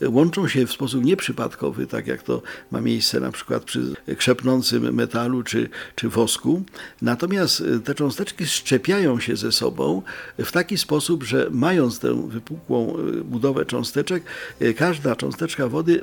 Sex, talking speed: male, 140 wpm